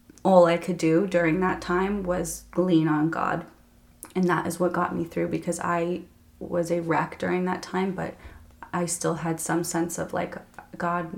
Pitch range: 175-190 Hz